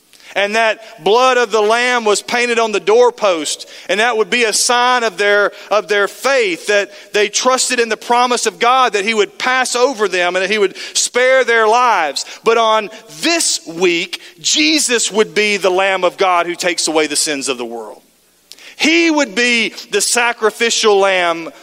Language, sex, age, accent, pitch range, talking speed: English, male, 40-59, American, 185-245 Hz, 190 wpm